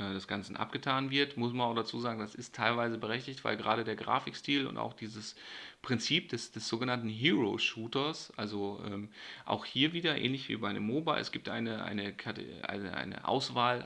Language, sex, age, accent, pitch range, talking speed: German, male, 30-49, German, 105-135 Hz, 180 wpm